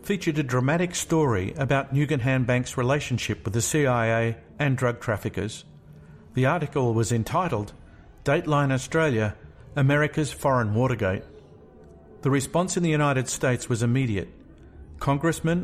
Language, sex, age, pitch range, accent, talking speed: English, male, 50-69, 115-150 Hz, Australian, 125 wpm